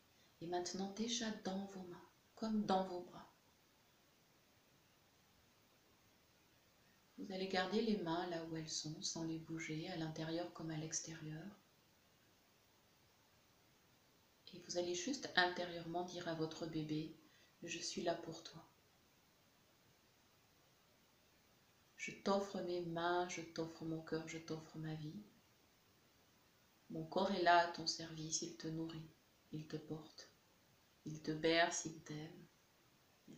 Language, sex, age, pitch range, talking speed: French, female, 30-49, 165-180 Hz, 130 wpm